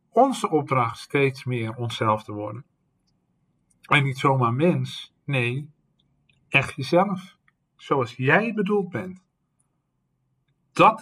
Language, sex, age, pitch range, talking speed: Dutch, male, 50-69, 125-175 Hz, 105 wpm